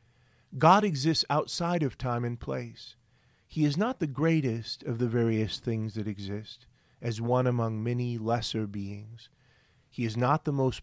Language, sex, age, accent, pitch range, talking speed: English, male, 40-59, American, 115-145 Hz, 160 wpm